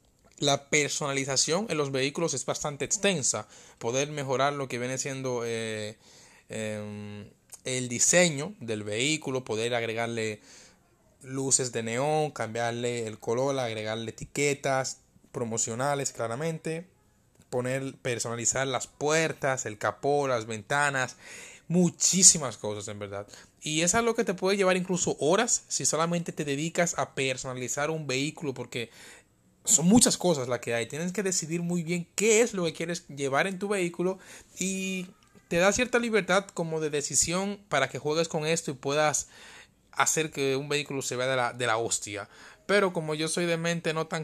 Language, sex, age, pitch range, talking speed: Spanish, male, 20-39, 125-170 Hz, 155 wpm